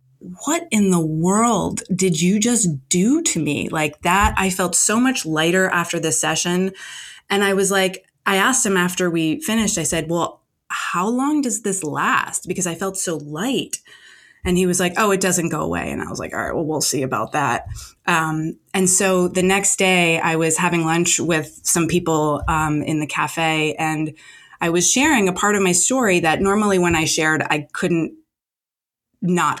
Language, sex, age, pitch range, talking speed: English, female, 20-39, 155-185 Hz, 195 wpm